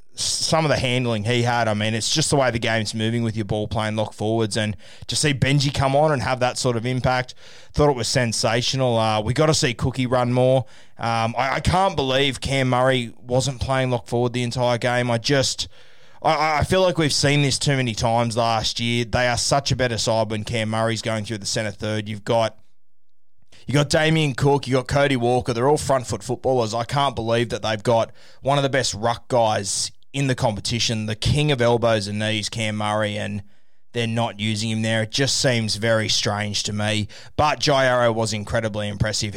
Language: English